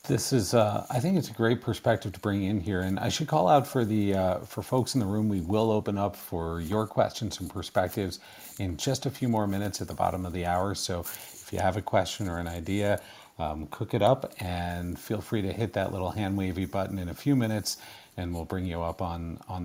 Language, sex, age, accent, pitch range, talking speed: English, male, 40-59, American, 95-115 Hz, 245 wpm